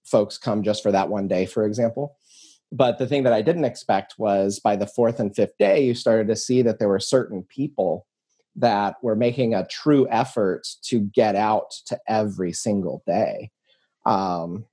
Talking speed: 185 wpm